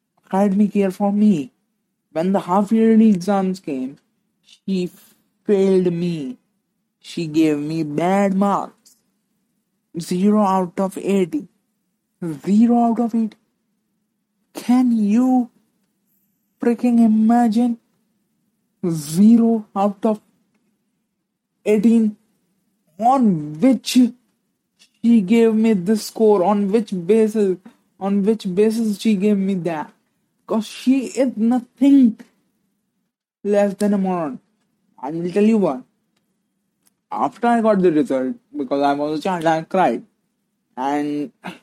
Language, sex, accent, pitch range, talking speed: Hindi, male, native, 185-225 Hz, 115 wpm